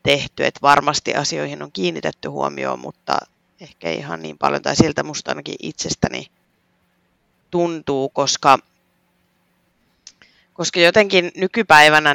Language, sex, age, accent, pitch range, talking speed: Finnish, female, 30-49, native, 130-150 Hz, 110 wpm